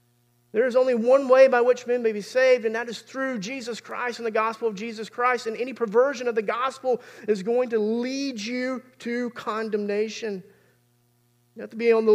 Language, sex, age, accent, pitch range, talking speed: English, male, 40-59, American, 165-230 Hz, 205 wpm